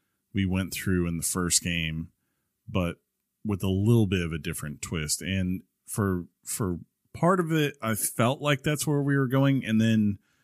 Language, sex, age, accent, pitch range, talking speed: English, male, 40-59, American, 90-110 Hz, 185 wpm